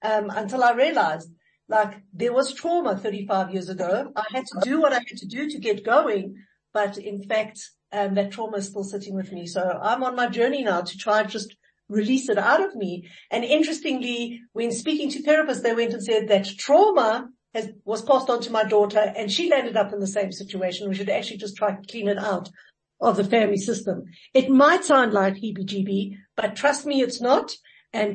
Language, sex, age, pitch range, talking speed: English, female, 60-79, 200-260 Hz, 215 wpm